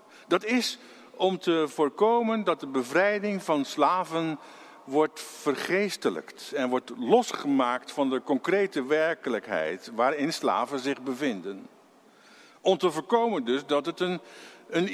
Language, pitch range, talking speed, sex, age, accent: Dutch, 135-190 Hz, 125 wpm, male, 50-69, Dutch